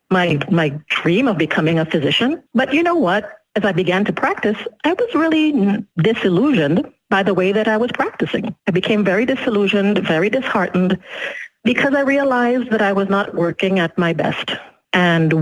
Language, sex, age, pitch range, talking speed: English, female, 50-69, 180-240 Hz, 175 wpm